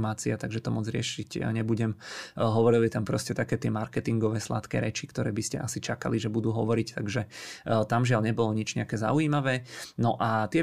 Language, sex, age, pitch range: Czech, male, 20-39, 110-115 Hz